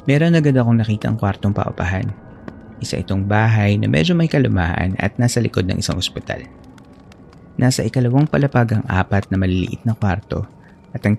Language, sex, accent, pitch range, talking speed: Filipino, male, native, 100-125 Hz, 160 wpm